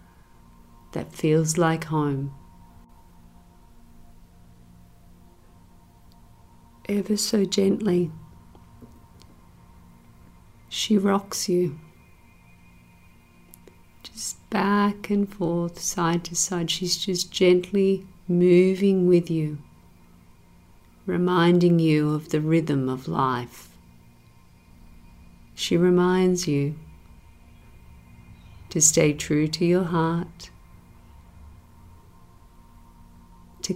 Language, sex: English, female